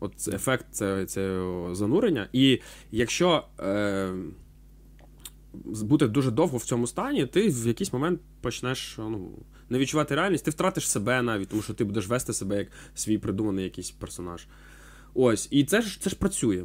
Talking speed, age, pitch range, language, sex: 160 wpm, 20-39, 95-125 Hz, Ukrainian, male